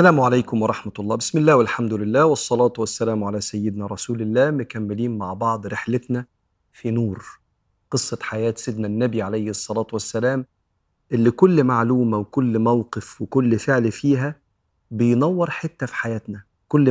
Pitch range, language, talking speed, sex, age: 110-135 Hz, Arabic, 140 wpm, male, 40-59